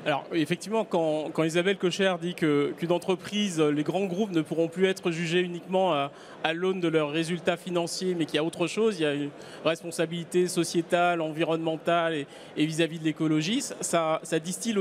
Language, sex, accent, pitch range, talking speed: French, male, French, 160-195 Hz, 190 wpm